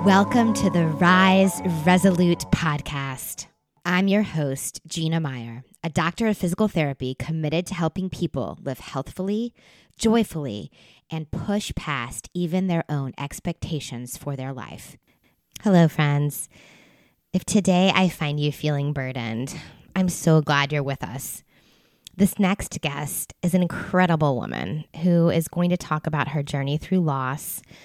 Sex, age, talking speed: female, 20-39, 140 wpm